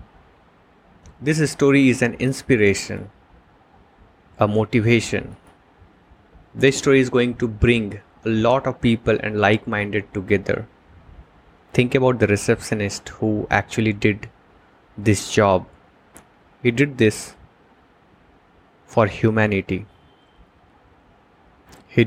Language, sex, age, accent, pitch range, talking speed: English, male, 20-39, Indian, 100-120 Hz, 95 wpm